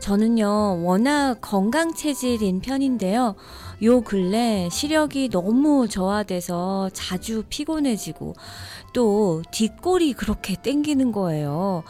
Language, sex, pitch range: Korean, female, 190-270 Hz